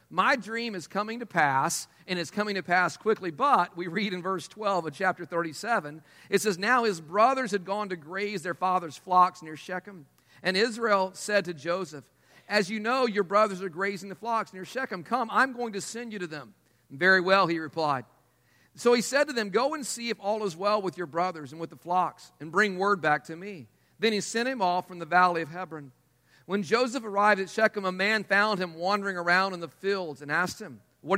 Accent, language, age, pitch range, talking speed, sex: American, English, 50-69, 170-215 Hz, 225 wpm, male